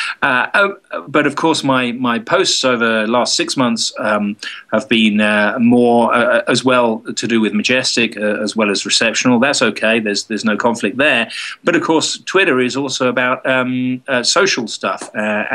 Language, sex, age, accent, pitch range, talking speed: English, male, 40-59, British, 115-155 Hz, 185 wpm